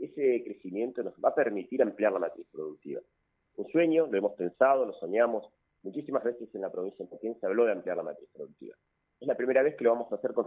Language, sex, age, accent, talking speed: Spanish, male, 30-49, Argentinian, 230 wpm